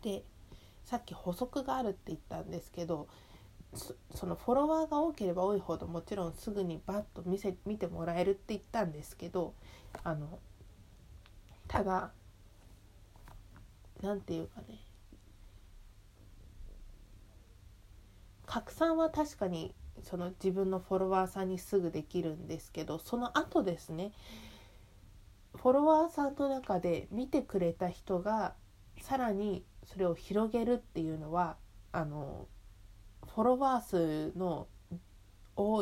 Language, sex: Japanese, female